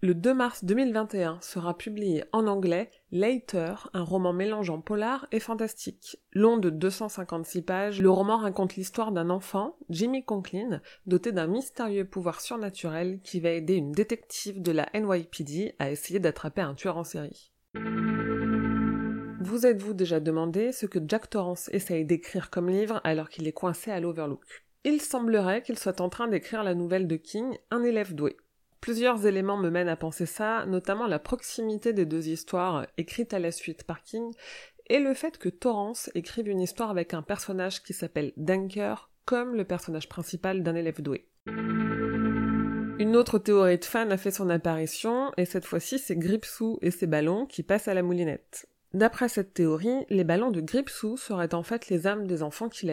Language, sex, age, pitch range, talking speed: French, female, 30-49, 175-225 Hz, 175 wpm